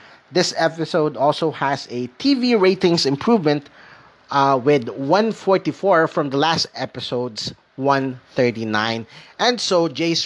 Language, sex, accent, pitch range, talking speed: English, male, Filipino, 125-170 Hz, 110 wpm